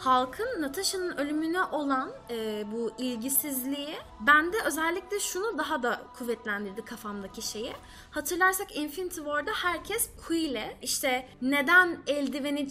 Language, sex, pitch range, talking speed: Turkish, female, 255-355 Hz, 115 wpm